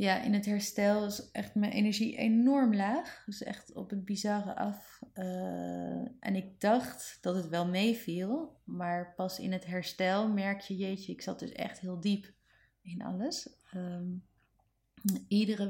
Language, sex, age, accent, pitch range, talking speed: Dutch, female, 30-49, Dutch, 165-200 Hz, 155 wpm